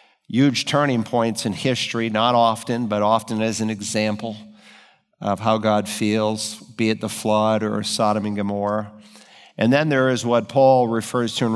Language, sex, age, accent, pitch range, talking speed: English, male, 50-69, American, 105-120 Hz, 170 wpm